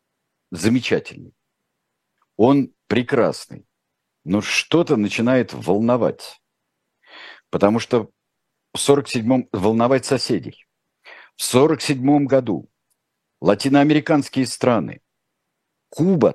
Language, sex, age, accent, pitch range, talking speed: Russian, male, 50-69, native, 100-125 Hz, 75 wpm